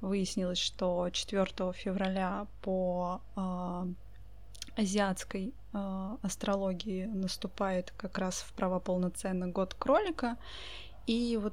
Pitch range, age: 190-225 Hz, 20-39